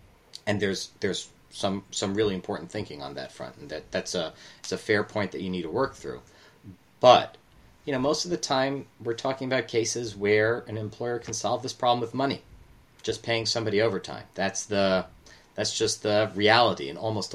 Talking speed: 195 wpm